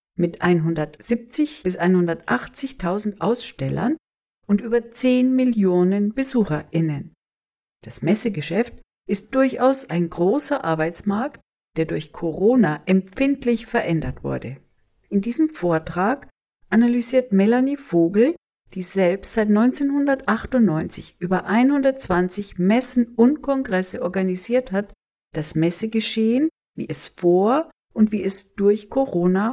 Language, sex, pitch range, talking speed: German, female, 175-245 Hz, 100 wpm